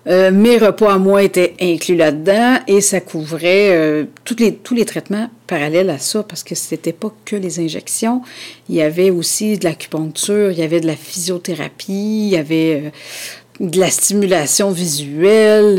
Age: 50-69